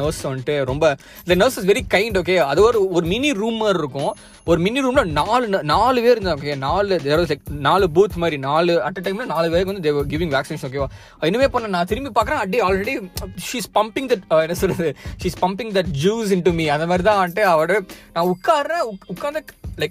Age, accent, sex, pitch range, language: 20-39, native, male, 155-200 Hz, Tamil